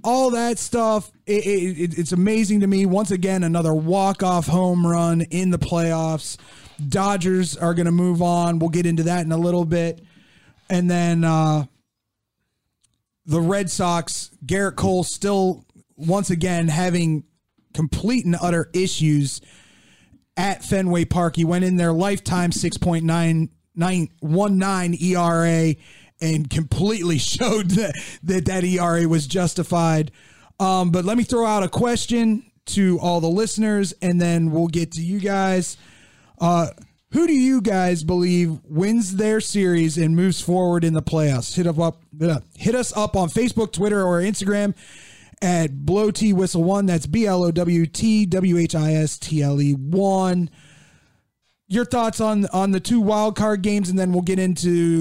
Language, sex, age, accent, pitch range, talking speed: English, male, 30-49, American, 165-195 Hz, 150 wpm